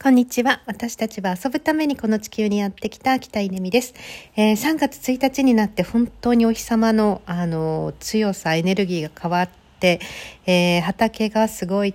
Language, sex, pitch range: Japanese, female, 165-210 Hz